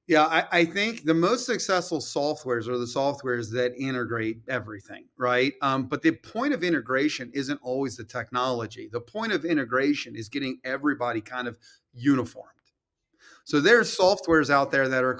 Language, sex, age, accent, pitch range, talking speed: English, male, 30-49, American, 130-195 Hz, 165 wpm